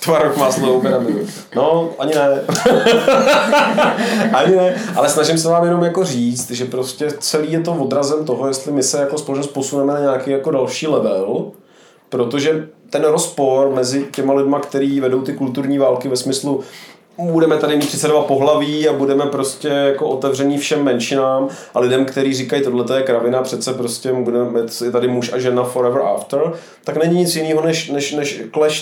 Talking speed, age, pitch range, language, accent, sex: 165 wpm, 30-49, 135-165 Hz, Czech, native, male